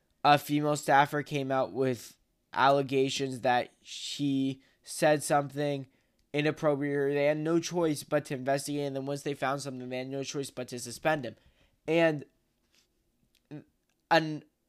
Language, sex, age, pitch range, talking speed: English, male, 10-29, 130-155 Hz, 145 wpm